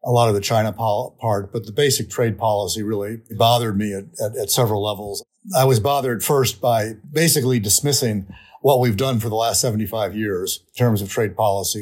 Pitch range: 110-135 Hz